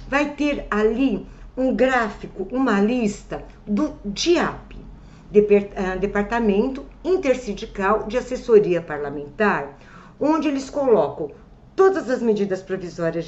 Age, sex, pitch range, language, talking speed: 60-79, female, 195-270 Hz, Portuguese, 95 wpm